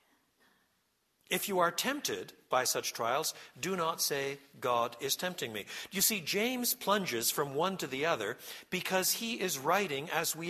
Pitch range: 145-210 Hz